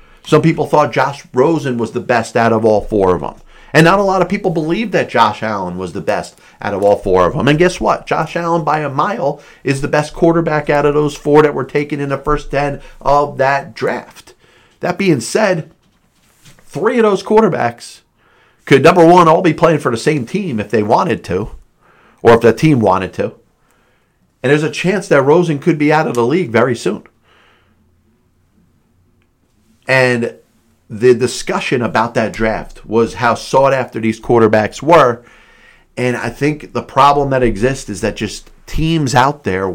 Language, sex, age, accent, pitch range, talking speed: English, male, 40-59, American, 120-160 Hz, 190 wpm